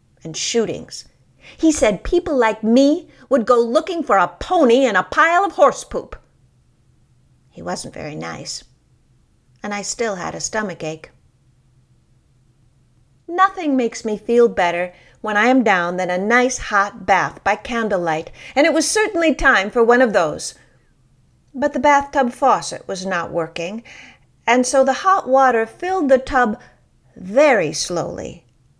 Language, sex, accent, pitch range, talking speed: English, female, American, 170-270 Hz, 150 wpm